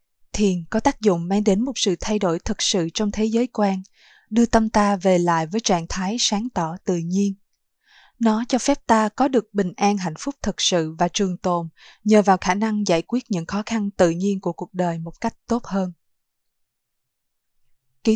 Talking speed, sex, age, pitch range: 205 wpm, female, 20-39, 175-220 Hz